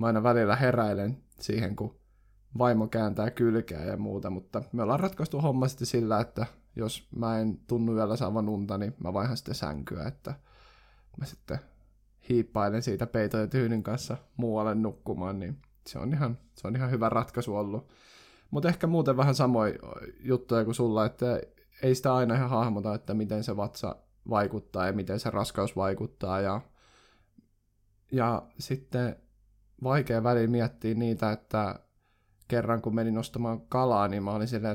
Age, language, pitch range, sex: 20-39, Finnish, 105-120 Hz, male